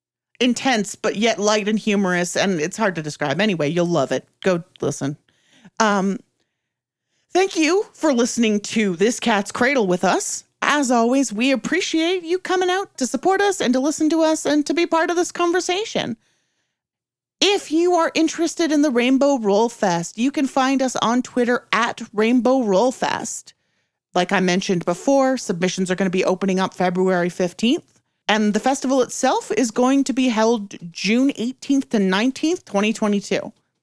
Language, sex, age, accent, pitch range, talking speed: English, female, 40-59, American, 195-285 Hz, 170 wpm